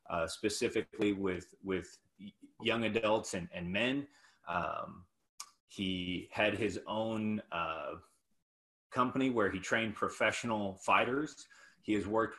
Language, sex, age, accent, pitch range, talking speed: English, male, 30-49, American, 95-115 Hz, 115 wpm